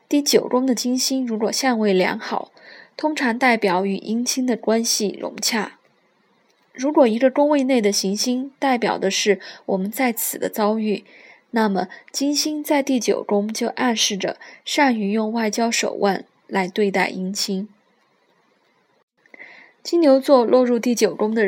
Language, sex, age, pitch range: Chinese, female, 20-39, 200-260 Hz